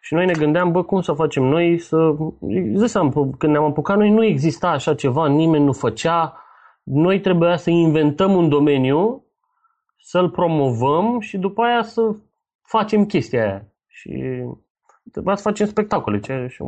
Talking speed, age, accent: 155 wpm, 30-49, native